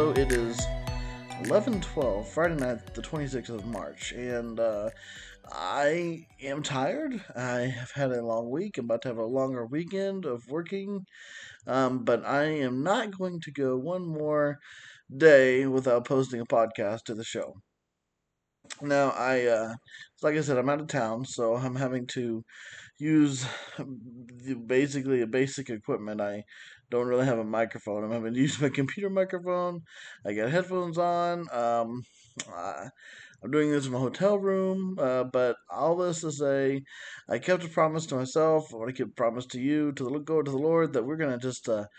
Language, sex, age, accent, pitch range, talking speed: English, male, 20-39, American, 125-155 Hz, 175 wpm